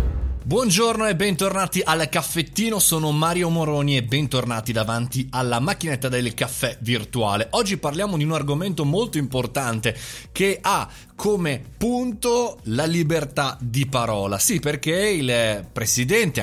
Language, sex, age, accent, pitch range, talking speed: Italian, male, 30-49, native, 120-160 Hz, 130 wpm